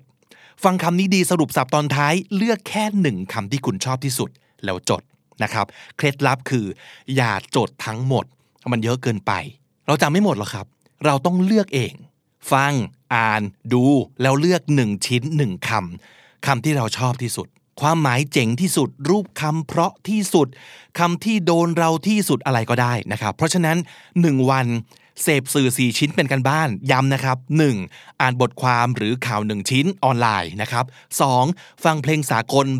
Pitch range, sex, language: 120-160 Hz, male, Thai